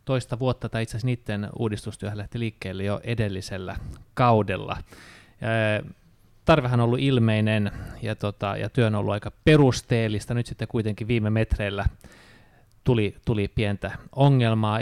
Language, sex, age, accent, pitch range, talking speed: Finnish, male, 20-39, native, 100-125 Hz, 120 wpm